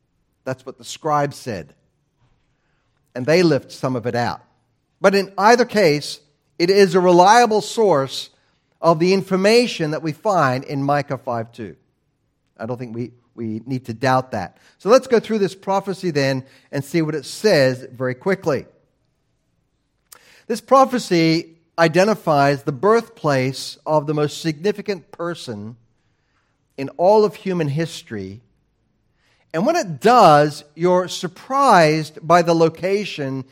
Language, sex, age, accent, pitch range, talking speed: English, male, 50-69, American, 135-180 Hz, 140 wpm